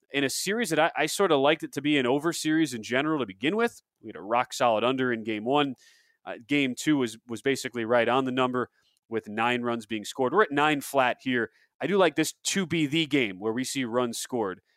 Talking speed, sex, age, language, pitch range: 250 wpm, male, 30-49, English, 115-150 Hz